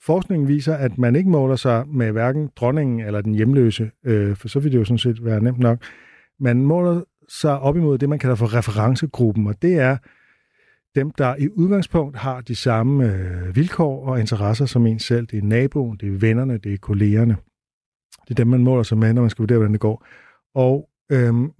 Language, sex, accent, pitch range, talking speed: Danish, male, native, 115-140 Hz, 205 wpm